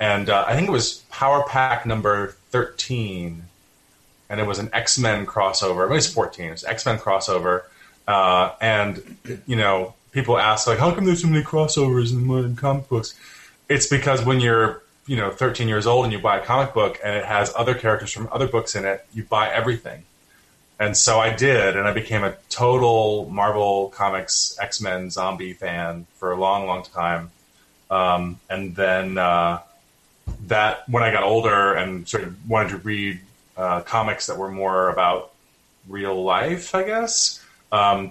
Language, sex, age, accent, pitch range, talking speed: English, male, 20-39, American, 95-115 Hz, 180 wpm